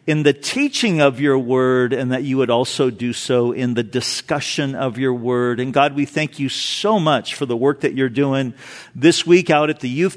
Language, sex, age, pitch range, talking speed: English, male, 50-69, 125-165 Hz, 225 wpm